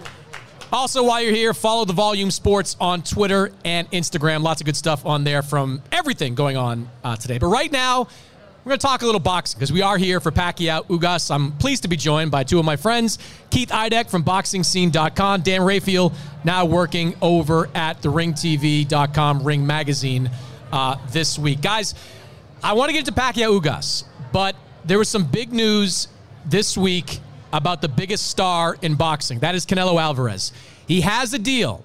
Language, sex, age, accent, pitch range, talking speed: English, male, 30-49, American, 150-205 Hz, 185 wpm